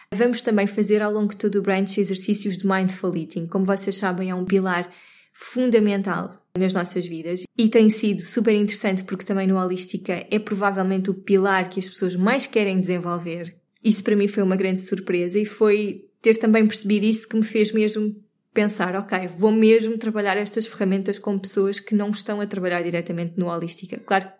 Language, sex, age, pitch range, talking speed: Portuguese, female, 20-39, 180-210 Hz, 190 wpm